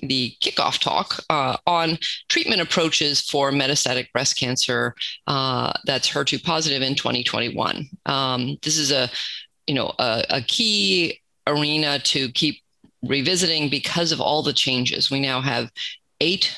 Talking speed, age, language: 140 wpm, 30-49, English